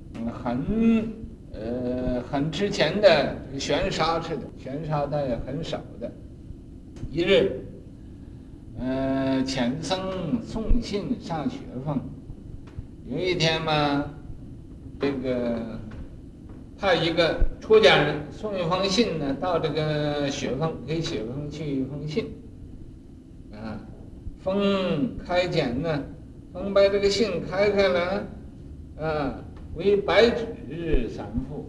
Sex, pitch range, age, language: male, 125-180 Hz, 60-79, Chinese